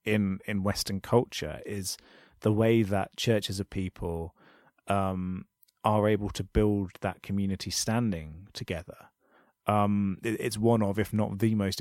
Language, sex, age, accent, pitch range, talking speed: English, male, 30-49, British, 95-110 Hz, 140 wpm